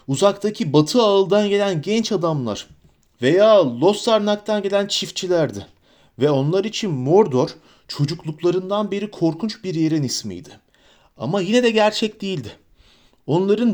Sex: male